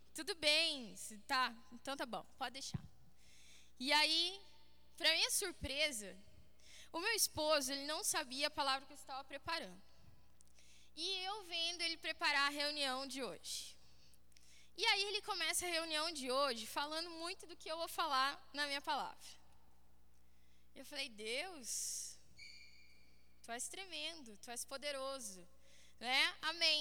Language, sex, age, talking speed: Portuguese, female, 10-29, 140 wpm